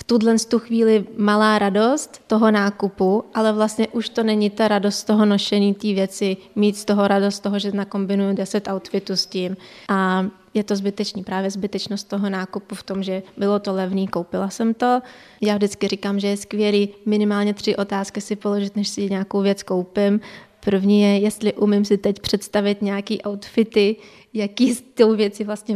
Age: 20-39